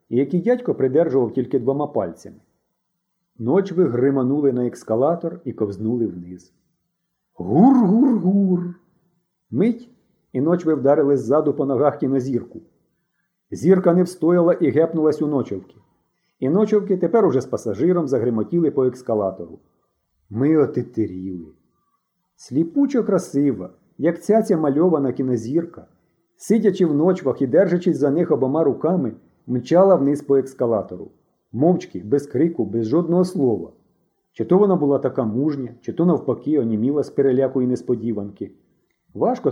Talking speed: 125 wpm